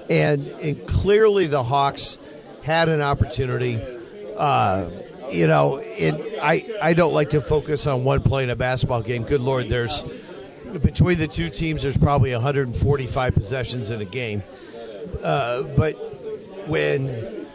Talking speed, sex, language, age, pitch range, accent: 140 wpm, male, English, 50-69, 125-150 Hz, American